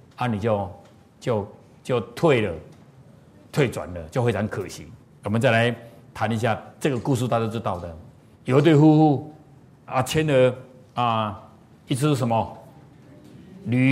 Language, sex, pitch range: Chinese, male, 130-180 Hz